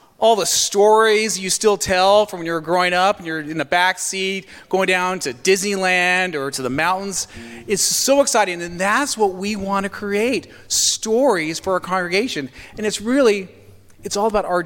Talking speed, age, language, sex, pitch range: 185 wpm, 40-59, English, male, 140-200 Hz